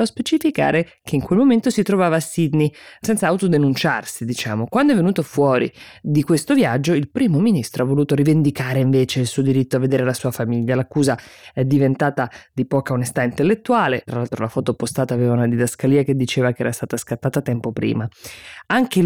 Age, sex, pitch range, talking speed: 20-39, female, 125-165 Hz, 185 wpm